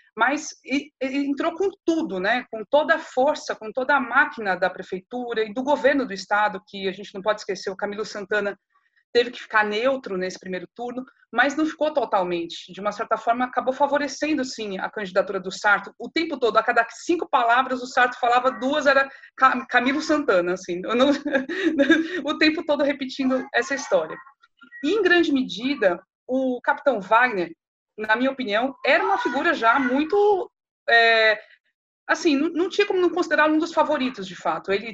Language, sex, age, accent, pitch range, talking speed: Portuguese, female, 30-49, Brazilian, 210-290 Hz, 180 wpm